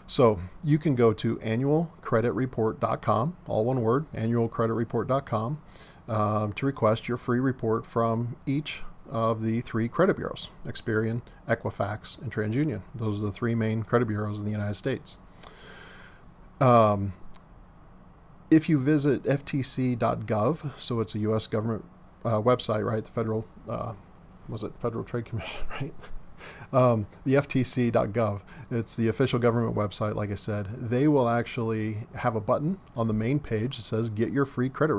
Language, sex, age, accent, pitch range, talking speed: English, male, 40-59, American, 110-130 Hz, 145 wpm